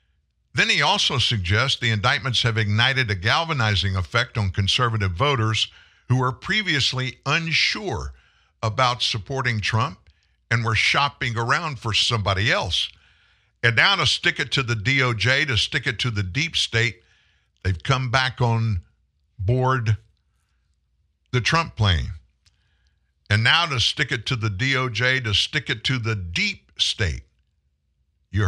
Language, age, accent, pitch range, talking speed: English, 50-69, American, 90-130 Hz, 140 wpm